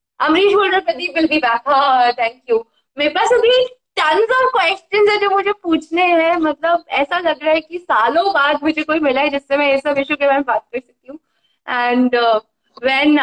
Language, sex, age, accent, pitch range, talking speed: Hindi, female, 20-39, native, 260-330 Hz, 175 wpm